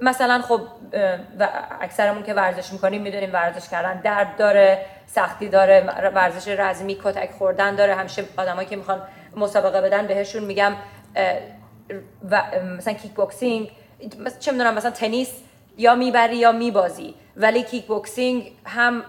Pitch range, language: 195-235 Hz, Persian